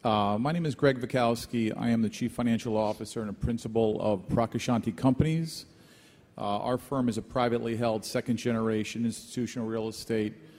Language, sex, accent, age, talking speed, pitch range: English, male, American, 40-59, 165 wpm, 105-115 Hz